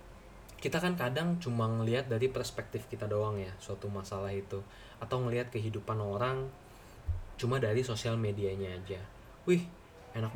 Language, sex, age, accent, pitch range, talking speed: English, male, 20-39, Indonesian, 105-130 Hz, 140 wpm